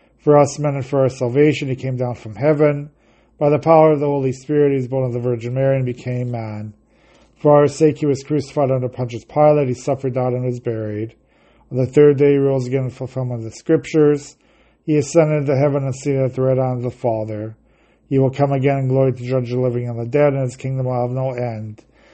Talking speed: 240 wpm